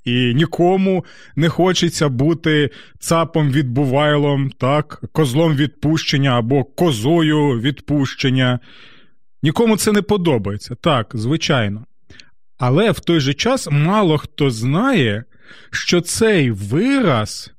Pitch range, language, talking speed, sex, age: 135-175 Hz, Ukrainian, 95 wpm, male, 30-49